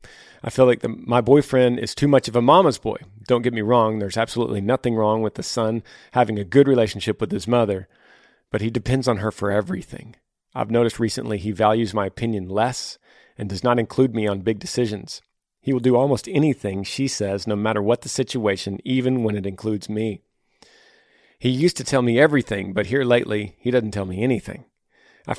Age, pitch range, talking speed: 40-59, 105-125 Hz, 200 wpm